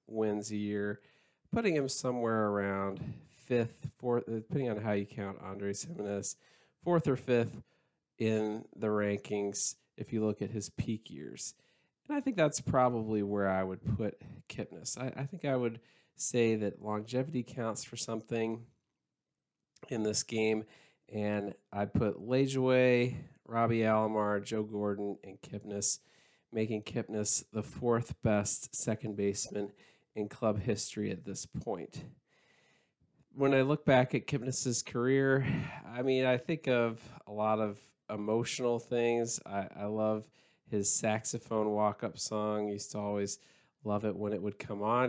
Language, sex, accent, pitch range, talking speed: English, male, American, 105-120 Hz, 150 wpm